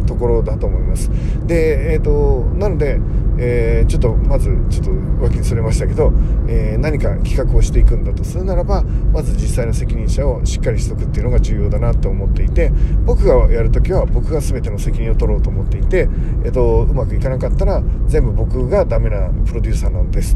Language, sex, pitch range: Japanese, male, 100-140 Hz